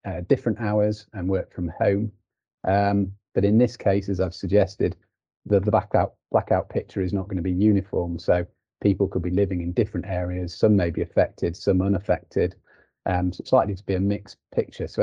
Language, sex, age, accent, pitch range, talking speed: English, male, 30-49, British, 90-105 Hz, 200 wpm